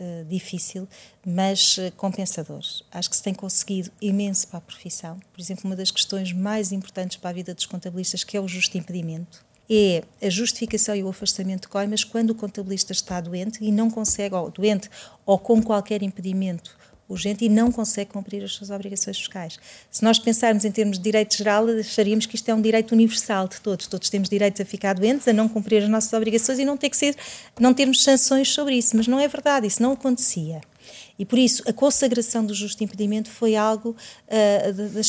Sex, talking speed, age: female, 205 wpm, 40-59